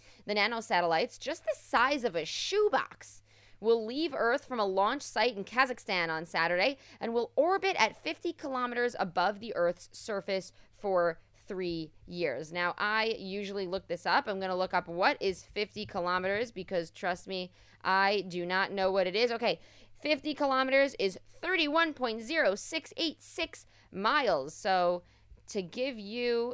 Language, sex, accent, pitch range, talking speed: English, female, American, 175-250 Hz, 150 wpm